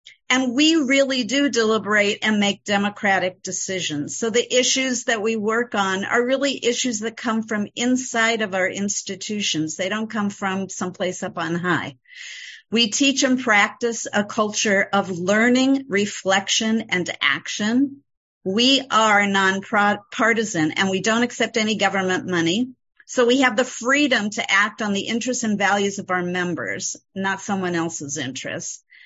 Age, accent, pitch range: 50-69, American, 190-240 Hz